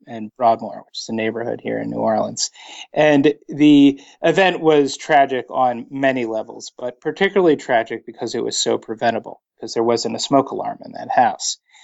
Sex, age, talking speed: male, 30-49, 175 wpm